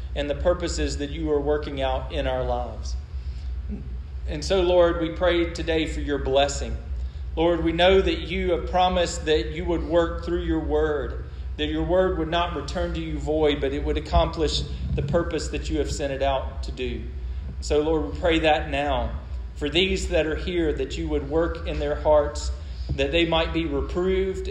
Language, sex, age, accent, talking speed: English, male, 40-59, American, 195 wpm